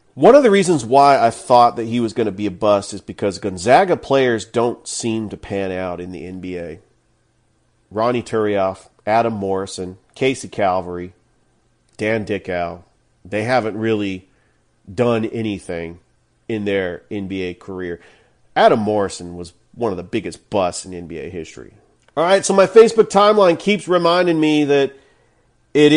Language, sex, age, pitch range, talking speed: English, male, 40-59, 110-140 Hz, 150 wpm